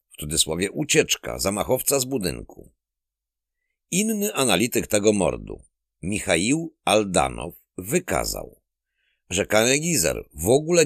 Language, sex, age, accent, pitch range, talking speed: Polish, male, 50-69, native, 80-120 Hz, 95 wpm